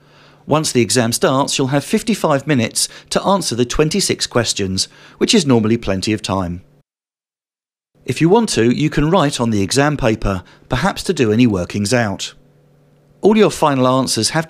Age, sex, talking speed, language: 40-59, male, 170 wpm, English